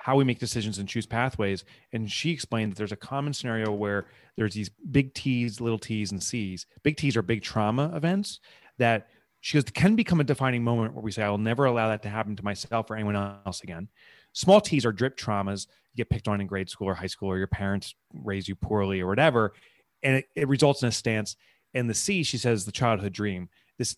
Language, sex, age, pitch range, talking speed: English, male, 30-49, 100-130 Hz, 230 wpm